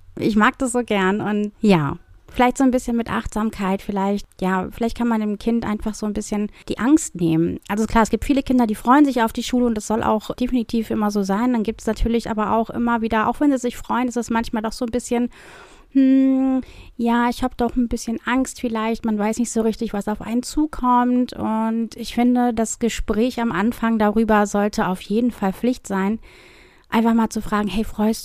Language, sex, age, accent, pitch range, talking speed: German, female, 30-49, German, 210-240 Hz, 225 wpm